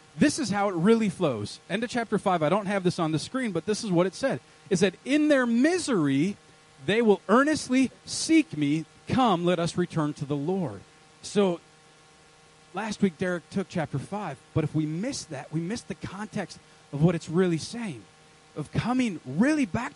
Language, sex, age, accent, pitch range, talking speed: English, male, 30-49, American, 155-240 Hz, 195 wpm